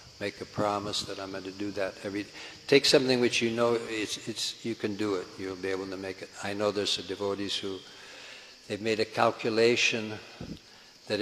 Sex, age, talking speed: male, 60-79, 210 wpm